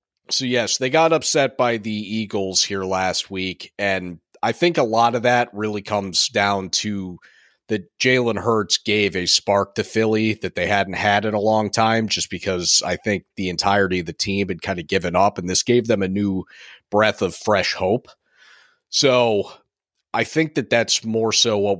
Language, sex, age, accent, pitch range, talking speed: English, male, 30-49, American, 95-115 Hz, 195 wpm